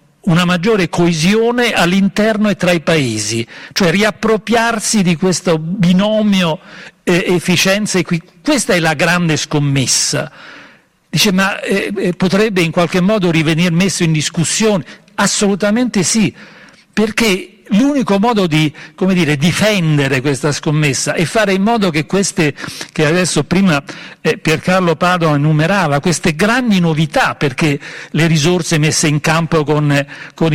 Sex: male